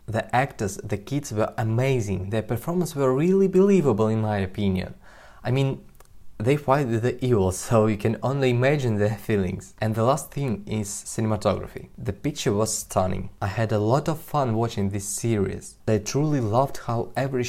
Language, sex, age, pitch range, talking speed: English, male, 20-39, 105-145 Hz, 175 wpm